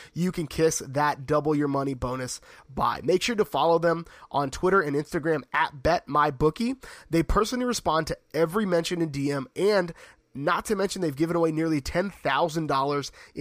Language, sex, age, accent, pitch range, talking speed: English, male, 20-39, American, 145-175 Hz, 190 wpm